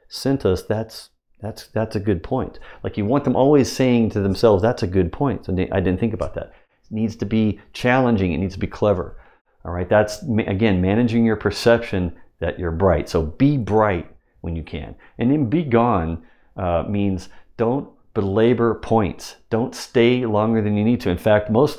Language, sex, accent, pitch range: English, male, American, 95-115 Hz